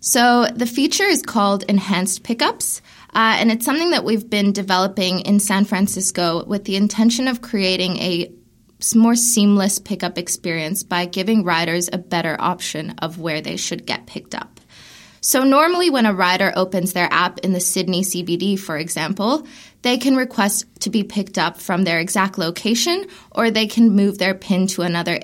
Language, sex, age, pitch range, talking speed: English, female, 20-39, 175-225 Hz, 175 wpm